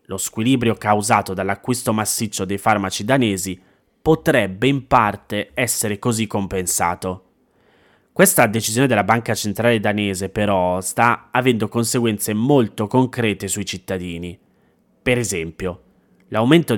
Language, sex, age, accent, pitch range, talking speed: Italian, male, 30-49, native, 100-120 Hz, 110 wpm